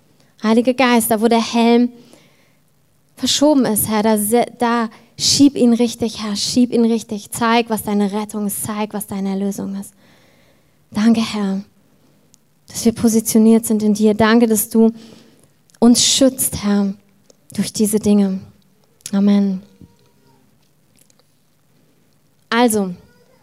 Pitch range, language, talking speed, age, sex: 205-240 Hz, German, 120 wpm, 20-39, female